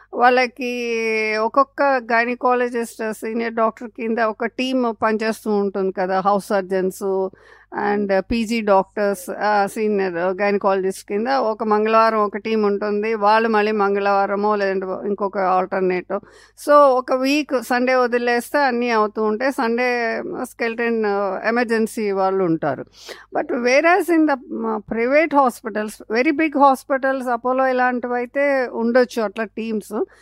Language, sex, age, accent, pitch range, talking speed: Telugu, female, 50-69, native, 210-255 Hz, 135 wpm